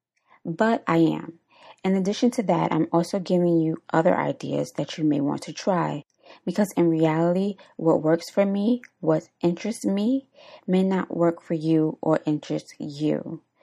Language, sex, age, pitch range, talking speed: English, female, 20-39, 155-185 Hz, 165 wpm